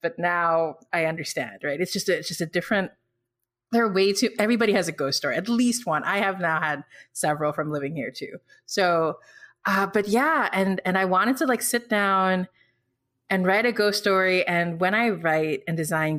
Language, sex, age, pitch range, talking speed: English, female, 30-49, 150-195 Hz, 200 wpm